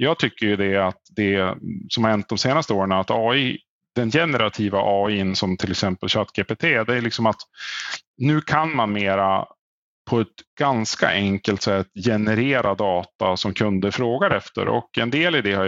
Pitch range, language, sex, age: 105-130 Hz, Swedish, male, 30-49